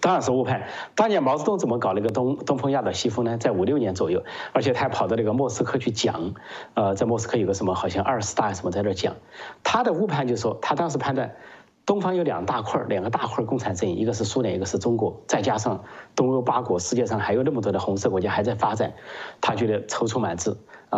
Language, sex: Chinese, male